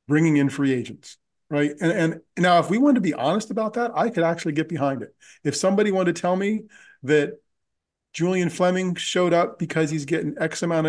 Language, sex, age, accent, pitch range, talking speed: English, male, 40-59, American, 140-175 Hz, 210 wpm